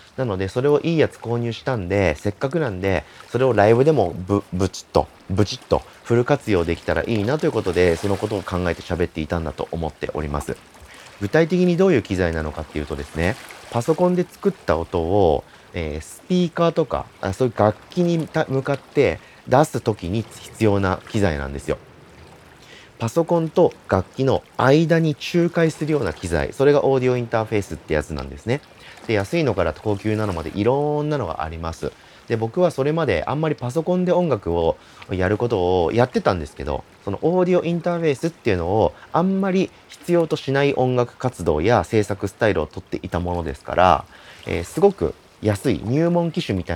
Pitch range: 90-150 Hz